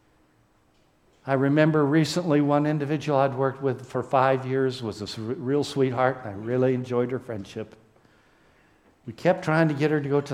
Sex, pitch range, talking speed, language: male, 115-150 Hz, 175 wpm, English